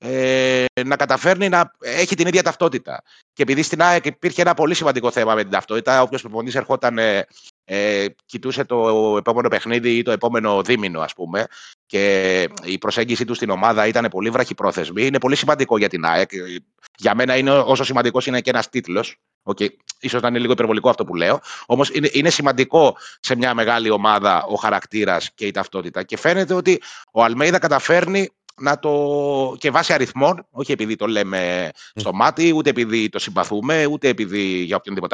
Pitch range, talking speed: 115-160 Hz, 180 wpm